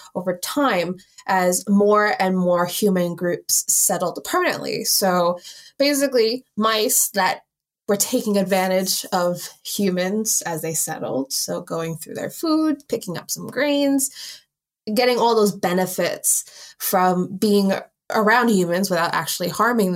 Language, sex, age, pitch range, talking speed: English, female, 20-39, 180-230 Hz, 125 wpm